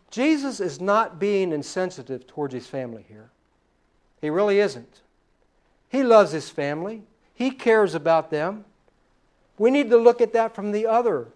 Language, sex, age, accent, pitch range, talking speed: English, male, 60-79, American, 165-235 Hz, 155 wpm